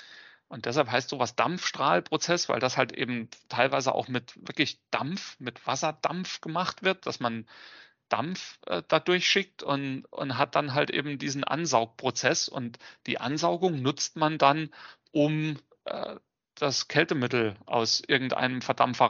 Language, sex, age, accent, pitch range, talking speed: German, male, 40-59, German, 120-150 Hz, 140 wpm